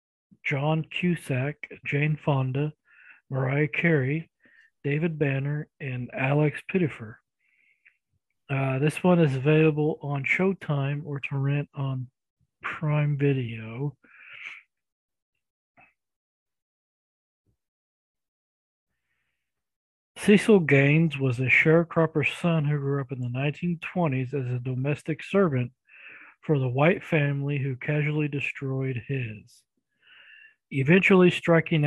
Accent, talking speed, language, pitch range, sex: American, 95 wpm, English, 130-160 Hz, male